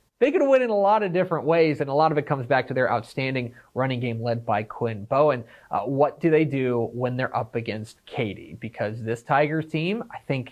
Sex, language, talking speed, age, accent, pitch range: male, English, 235 wpm, 30-49, American, 115-160 Hz